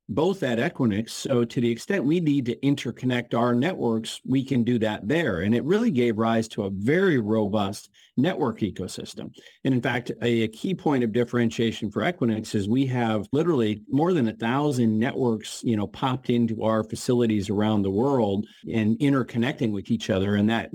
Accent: American